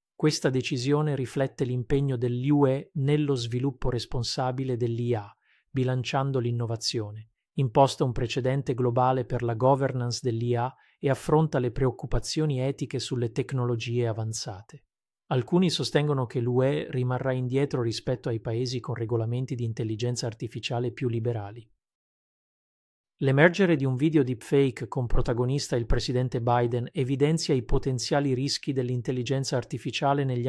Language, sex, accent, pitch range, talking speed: Italian, male, native, 120-135 Hz, 120 wpm